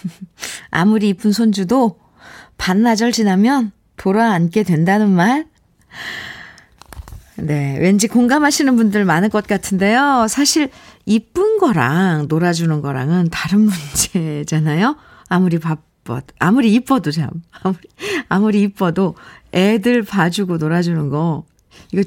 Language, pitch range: Korean, 165-245 Hz